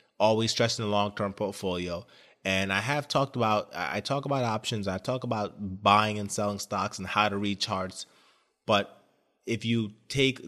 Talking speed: 170 wpm